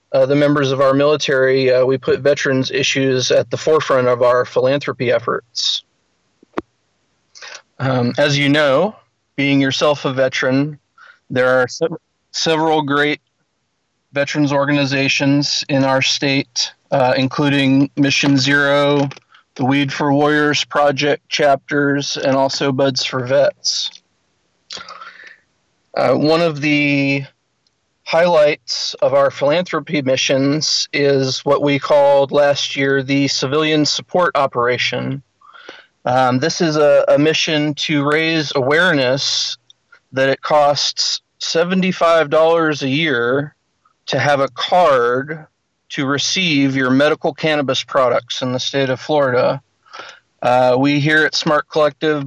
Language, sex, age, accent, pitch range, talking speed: English, male, 40-59, American, 135-155 Hz, 120 wpm